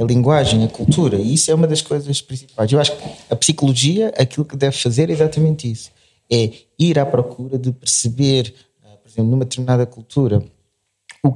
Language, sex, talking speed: Portuguese, male, 180 wpm